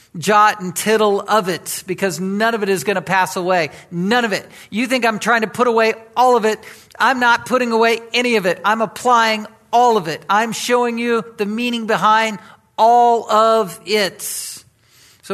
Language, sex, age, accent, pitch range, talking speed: English, male, 50-69, American, 165-210 Hz, 190 wpm